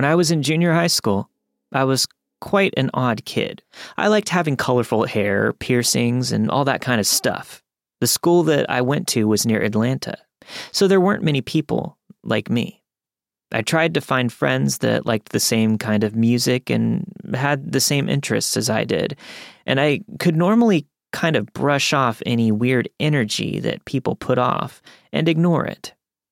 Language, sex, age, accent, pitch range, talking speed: English, male, 30-49, American, 115-165 Hz, 180 wpm